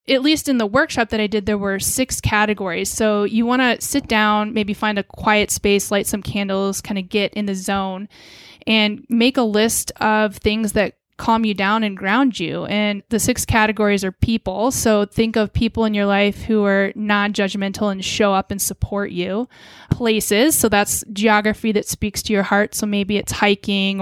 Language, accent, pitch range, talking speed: English, American, 195-220 Hz, 200 wpm